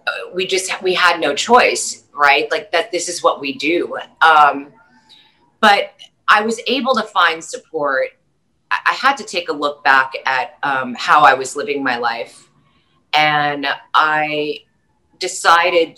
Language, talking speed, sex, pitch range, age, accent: English, 150 wpm, female, 145-190 Hz, 30-49, American